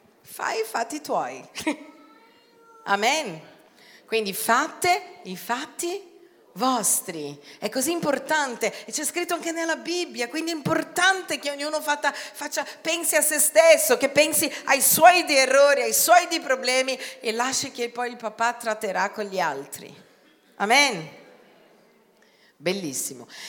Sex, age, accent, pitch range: female, 40-59, native, 185-295 Hz